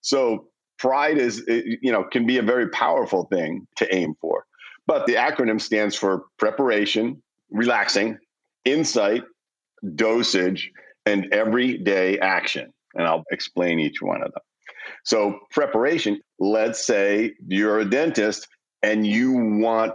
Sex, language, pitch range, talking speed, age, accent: male, English, 100-120 Hz, 130 wpm, 50-69, American